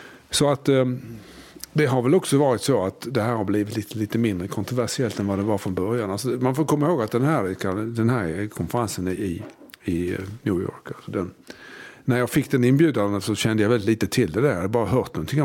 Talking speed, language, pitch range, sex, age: 225 wpm, English, 100-125 Hz, male, 50-69